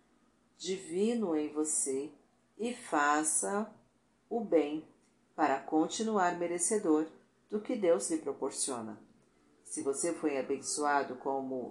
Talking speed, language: 100 wpm, Portuguese